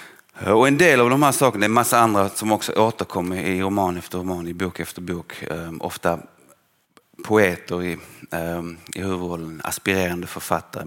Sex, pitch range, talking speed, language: male, 85-100 Hz, 155 wpm, English